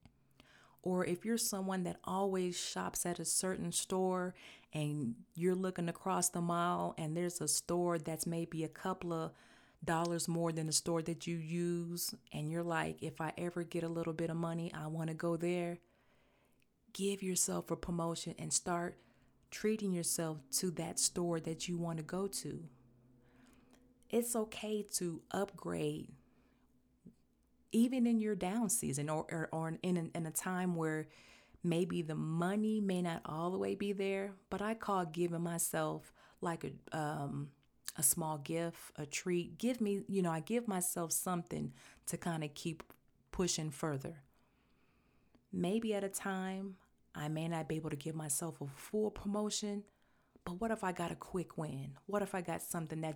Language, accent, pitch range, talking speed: English, American, 155-185 Hz, 170 wpm